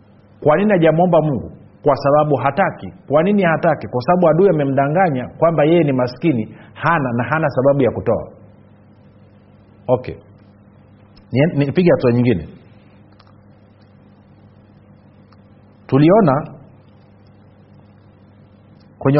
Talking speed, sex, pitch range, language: 95 wpm, male, 105-165 Hz, Swahili